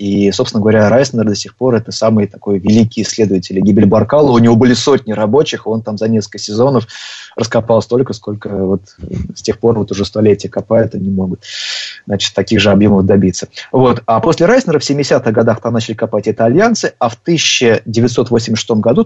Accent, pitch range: native, 105-125 Hz